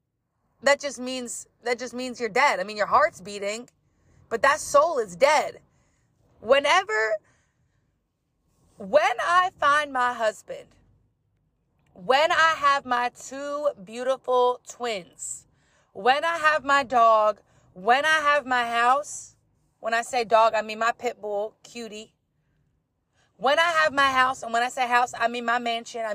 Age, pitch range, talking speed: 30-49, 230-285 Hz, 150 wpm